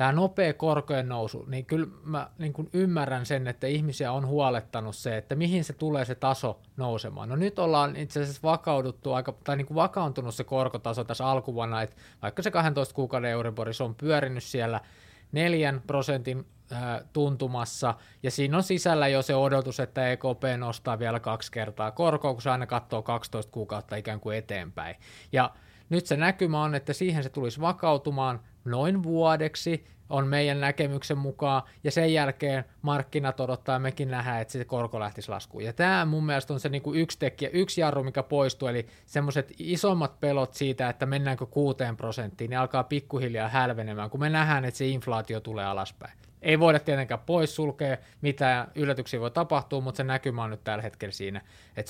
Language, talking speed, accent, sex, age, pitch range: Finnish, 170 wpm, native, male, 20-39, 115-150 Hz